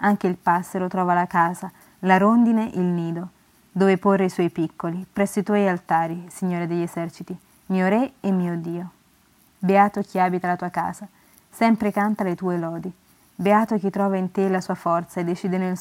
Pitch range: 175-205 Hz